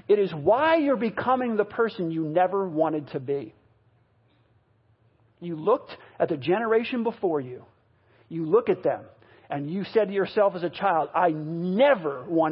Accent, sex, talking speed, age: American, male, 165 wpm, 50-69